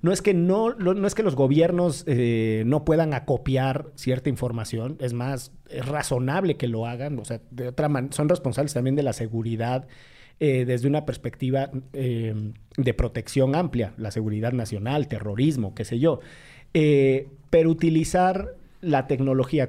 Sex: male